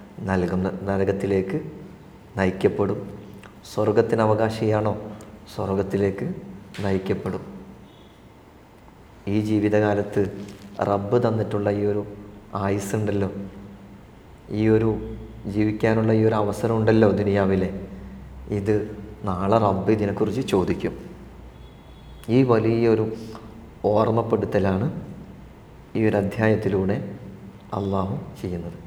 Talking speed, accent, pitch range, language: 70 wpm, native, 100-115 Hz, Malayalam